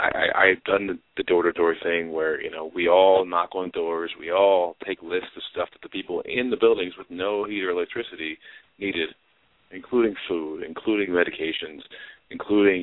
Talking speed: 180 wpm